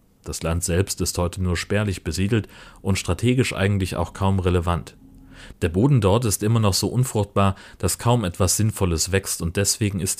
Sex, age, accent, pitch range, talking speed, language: male, 40-59, German, 90-110 Hz, 175 wpm, German